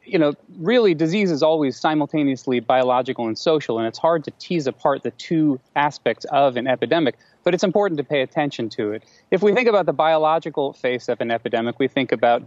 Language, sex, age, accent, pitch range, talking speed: English, male, 30-49, American, 120-155 Hz, 205 wpm